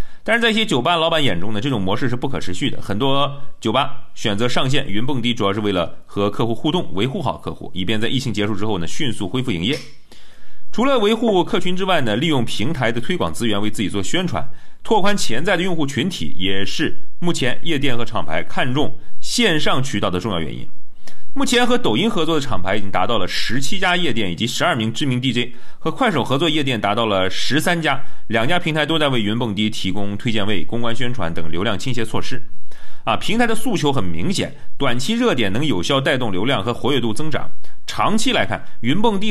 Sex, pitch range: male, 110-175 Hz